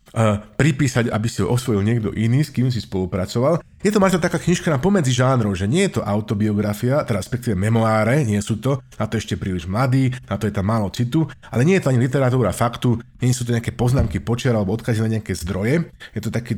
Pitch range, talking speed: 110-140 Hz, 230 wpm